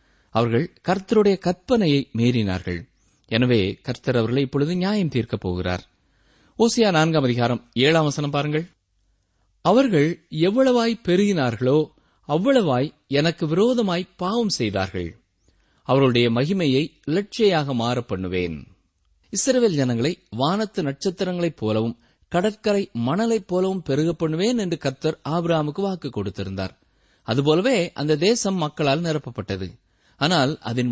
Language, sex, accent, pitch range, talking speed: Tamil, male, native, 110-185 Hz, 90 wpm